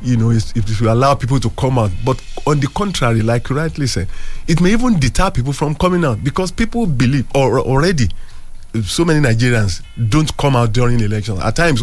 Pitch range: 110-155 Hz